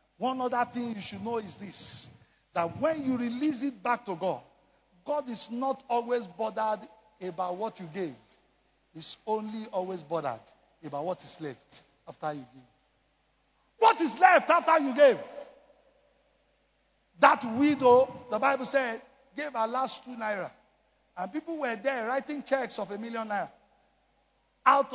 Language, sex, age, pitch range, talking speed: English, male, 50-69, 195-295 Hz, 150 wpm